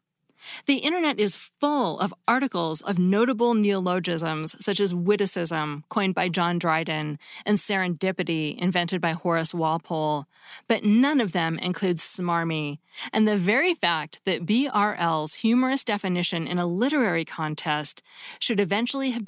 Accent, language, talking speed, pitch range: American, English, 135 wpm, 170-220 Hz